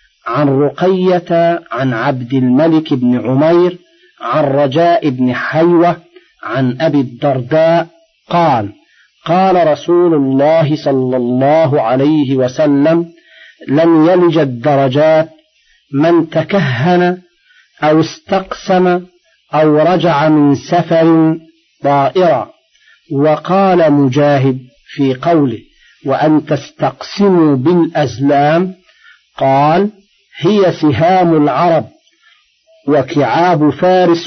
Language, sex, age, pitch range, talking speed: Arabic, male, 50-69, 145-175 Hz, 80 wpm